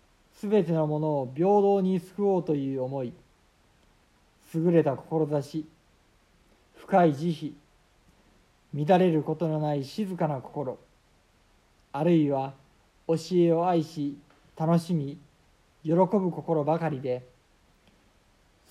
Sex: male